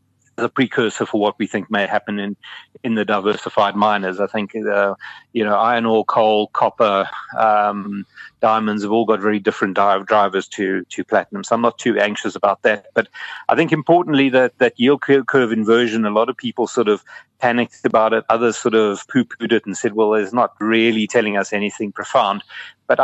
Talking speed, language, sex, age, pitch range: 200 wpm, English, male, 30-49, 105-115 Hz